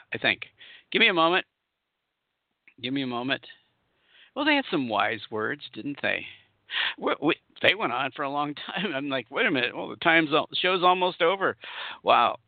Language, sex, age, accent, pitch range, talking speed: English, male, 50-69, American, 115-155 Hz, 195 wpm